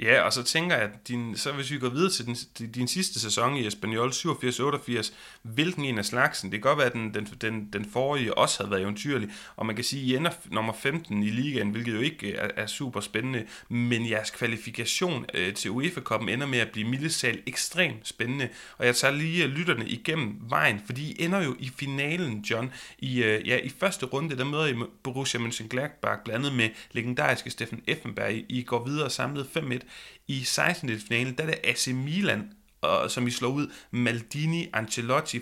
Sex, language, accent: male, Danish, native